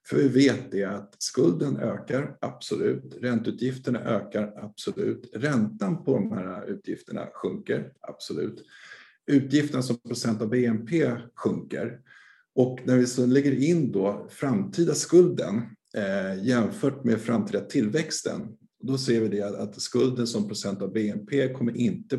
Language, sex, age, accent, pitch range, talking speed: Swedish, male, 50-69, native, 105-130 Hz, 140 wpm